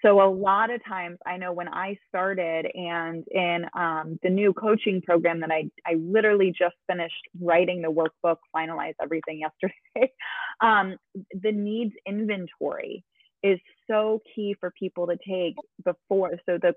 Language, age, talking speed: English, 20-39, 155 wpm